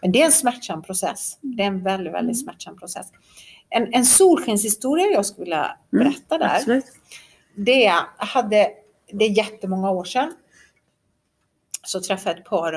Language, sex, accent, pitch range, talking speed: Swedish, female, native, 180-235 Hz, 145 wpm